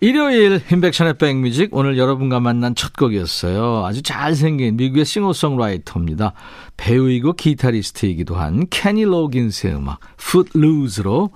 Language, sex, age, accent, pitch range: Korean, male, 50-69, native, 110-165 Hz